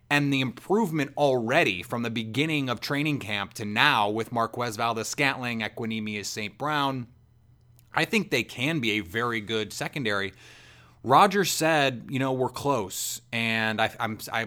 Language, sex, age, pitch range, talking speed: English, male, 30-49, 115-140 Hz, 155 wpm